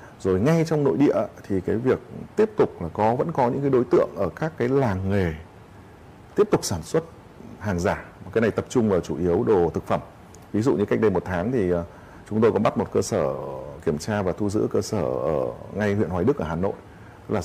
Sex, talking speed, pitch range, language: male, 240 wpm, 90-115 Hz, Vietnamese